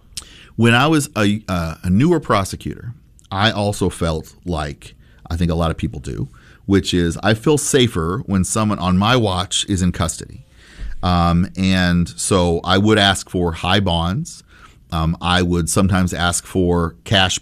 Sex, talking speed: male, 165 wpm